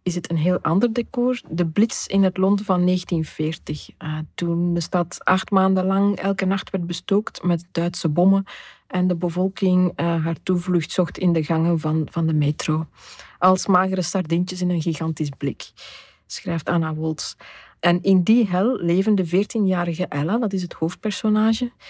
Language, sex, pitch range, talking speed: Dutch, female, 170-195 Hz, 175 wpm